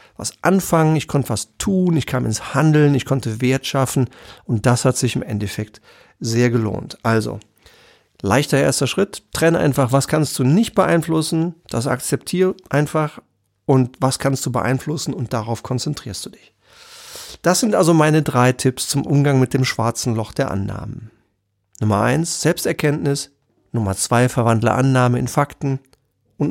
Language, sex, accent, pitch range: German, male, German, 125-165 Hz